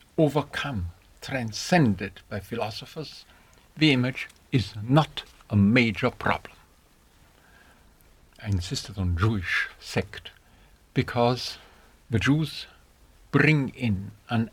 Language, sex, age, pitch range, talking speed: English, male, 60-79, 95-125 Hz, 90 wpm